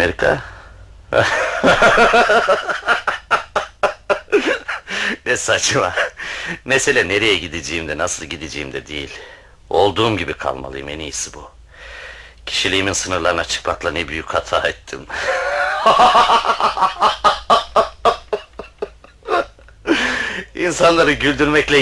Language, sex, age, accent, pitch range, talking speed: Turkish, male, 60-79, native, 75-100 Hz, 70 wpm